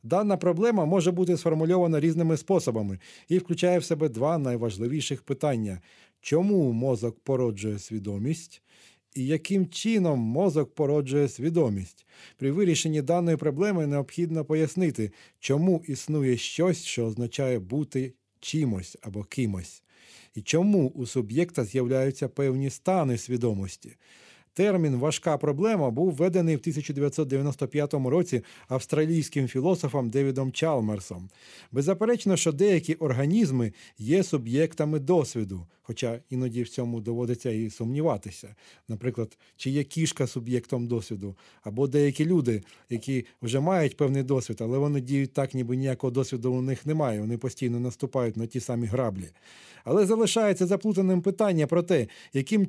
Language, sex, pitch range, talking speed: Ukrainian, male, 120-165 Hz, 130 wpm